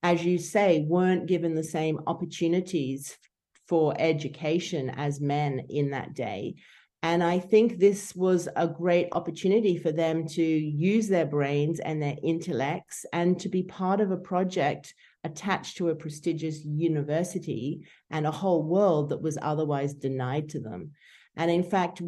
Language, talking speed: English, 155 wpm